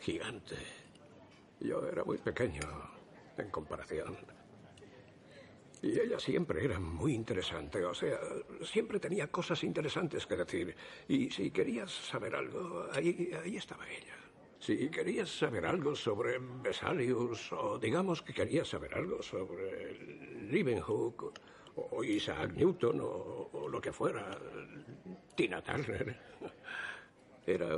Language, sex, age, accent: Spanish, male, 60-79, Spanish